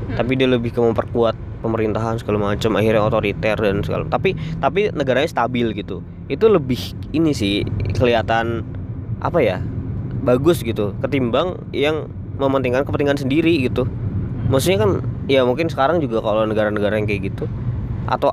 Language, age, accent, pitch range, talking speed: Indonesian, 20-39, native, 105-130 Hz, 145 wpm